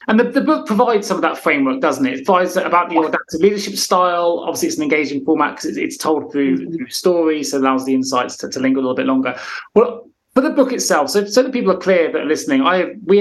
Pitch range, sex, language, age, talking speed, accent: 140-205 Hz, male, English, 30-49, 265 wpm, British